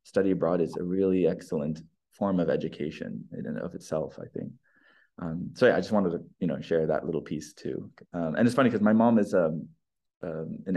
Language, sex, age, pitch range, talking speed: English, male, 20-39, 85-105 Hz, 225 wpm